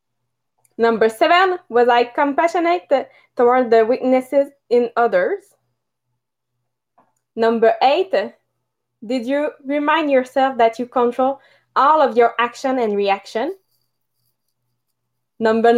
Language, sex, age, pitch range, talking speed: English, female, 20-39, 240-310 Hz, 105 wpm